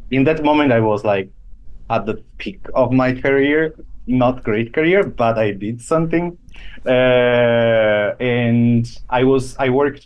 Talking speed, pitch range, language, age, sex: 150 wpm, 105-130 Hz, English, 30-49, male